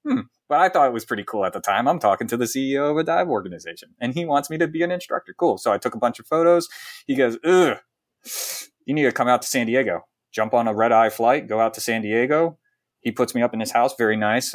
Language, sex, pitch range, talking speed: English, male, 110-130 Hz, 280 wpm